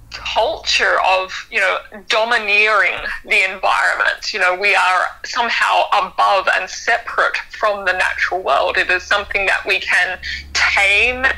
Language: English